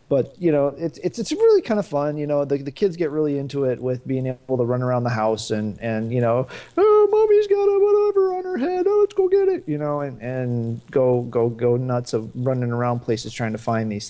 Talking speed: 255 wpm